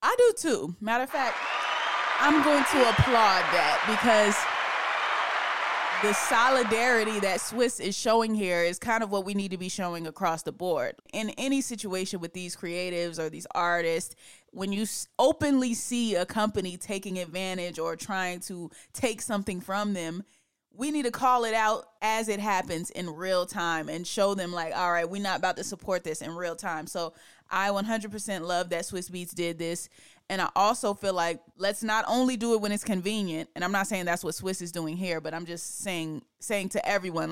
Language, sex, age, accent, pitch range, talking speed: English, female, 20-39, American, 170-215 Hz, 195 wpm